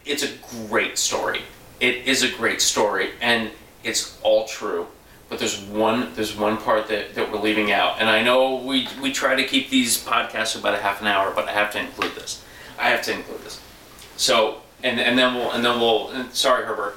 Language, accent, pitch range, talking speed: English, American, 105-125 Hz, 220 wpm